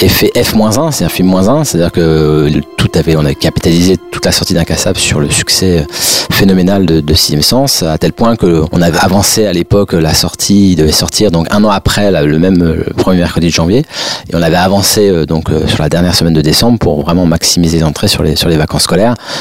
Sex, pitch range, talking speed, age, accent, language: male, 80-95 Hz, 215 wpm, 30-49, French, French